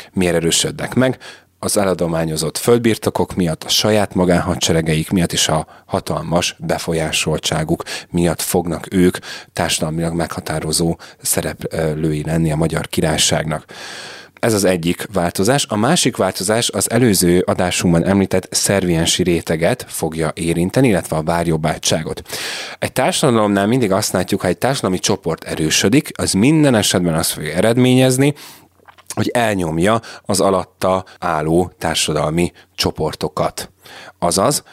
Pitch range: 80-100 Hz